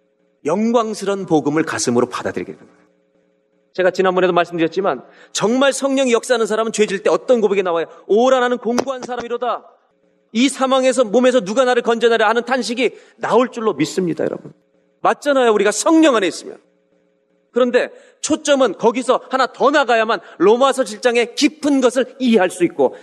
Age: 40-59